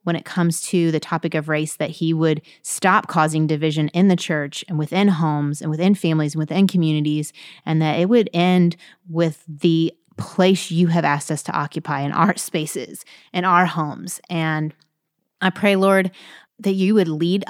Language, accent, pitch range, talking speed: English, American, 160-225 Hz, 185 wpm